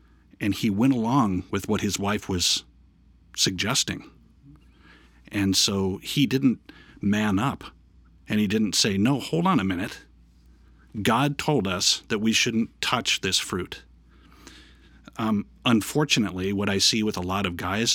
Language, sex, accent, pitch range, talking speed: English, male, American, 85-110 Hz, 145 wpm